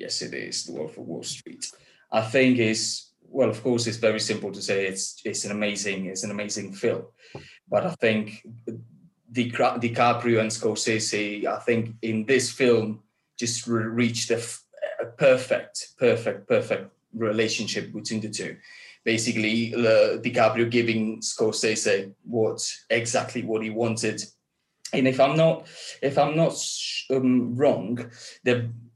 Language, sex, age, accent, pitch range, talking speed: English, male, 20-39, British, 105-120 Hz, 150 wpm